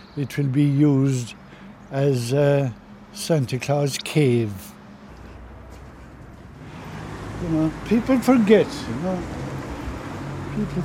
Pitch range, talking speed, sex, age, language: 105-175 Hz, 90 wpm, male, 60-79, English